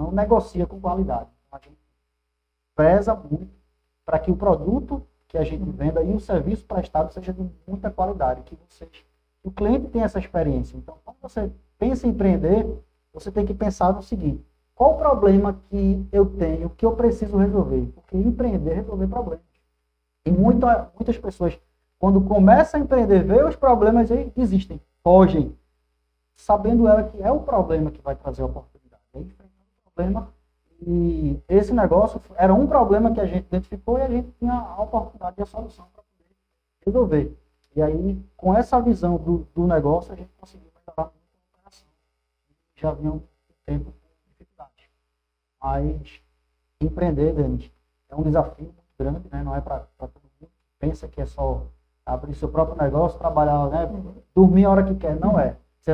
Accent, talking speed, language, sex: Brazilian, 170 wpm, Portuguese, male